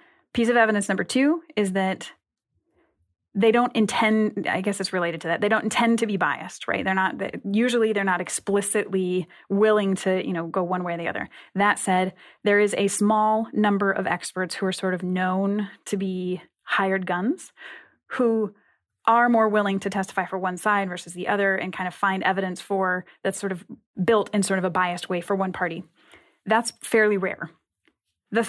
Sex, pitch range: female, 185-215 Hz